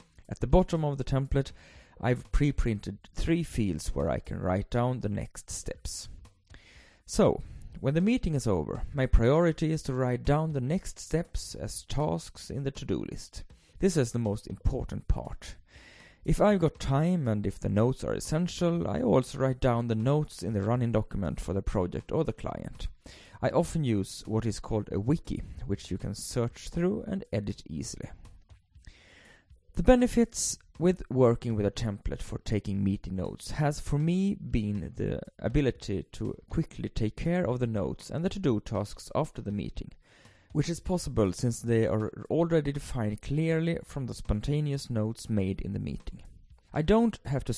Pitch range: 100-150 Hz